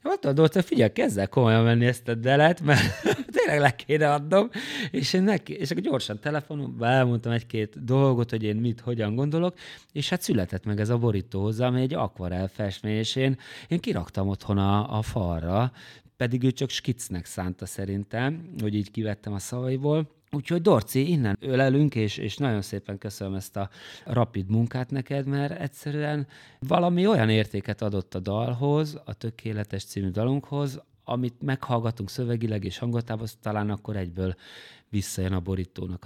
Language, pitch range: Hungarian, 100-135 Hz